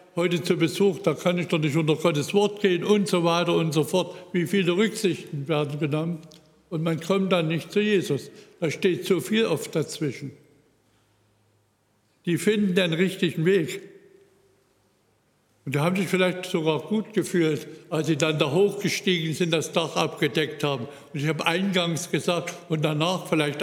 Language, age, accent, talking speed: German, 60-79, German, 170 wpm